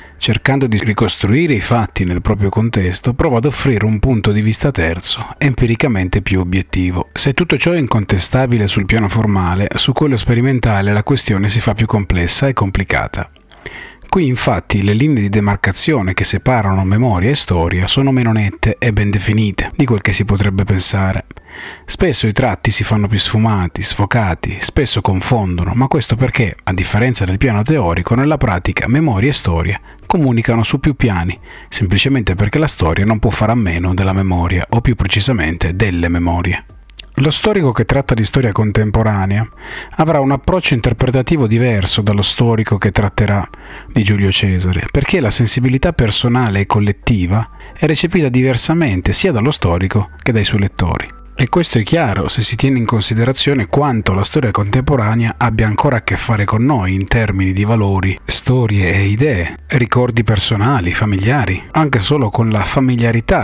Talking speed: 165 wpm